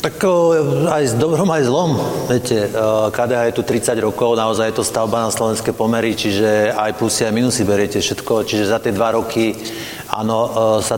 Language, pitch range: Slovak, 110-130 Hz